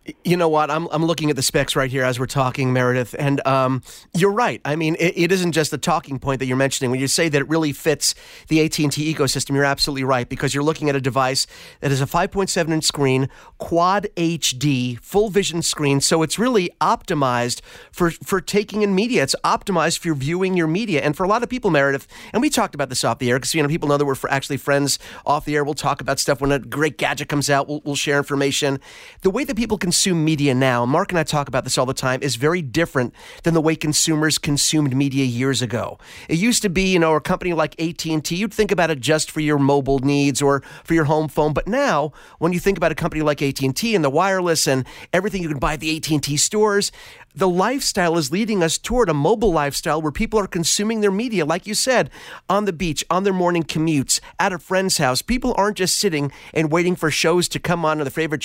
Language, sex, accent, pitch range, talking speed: English, male, American, 140-180 Hz, 240 wpm